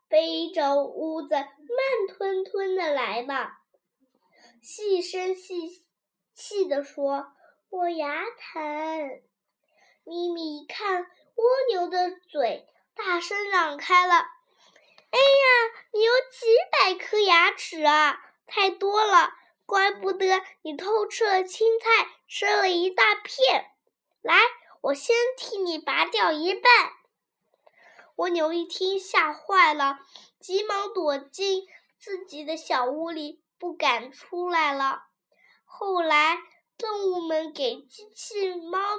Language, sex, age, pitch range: Chinese, female, 10-29, 300-405 Hz